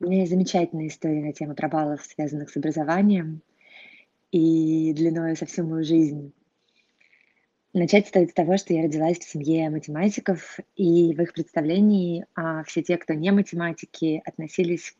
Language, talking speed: Russian, 150 wpm